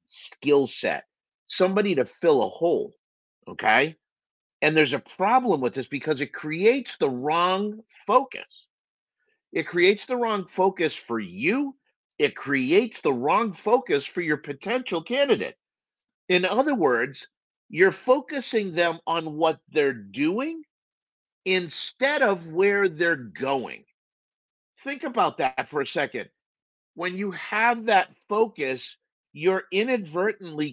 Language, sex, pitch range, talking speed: English, male, 165-240 Hz, 125 wpm